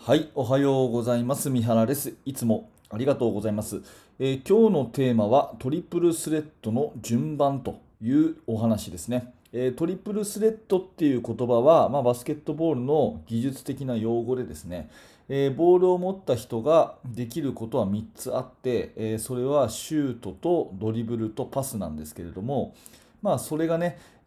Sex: male